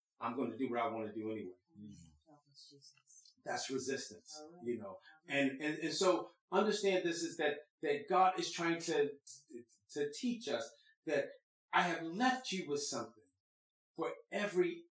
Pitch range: 155-245 Hz